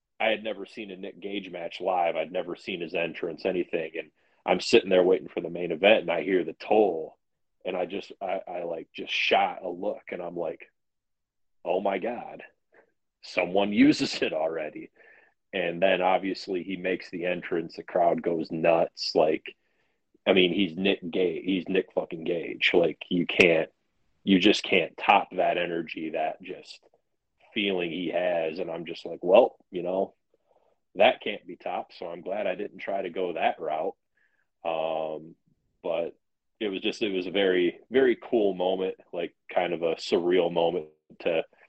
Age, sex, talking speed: 30-49, male, 180 wpm